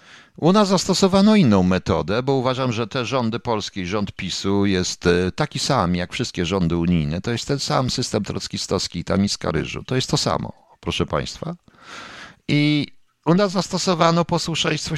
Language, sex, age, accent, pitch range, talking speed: Polish, male, 50-69, native, 95-155 Hz, 160 wpm